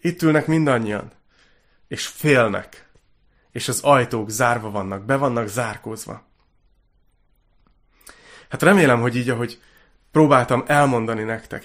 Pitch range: 110-140 Hz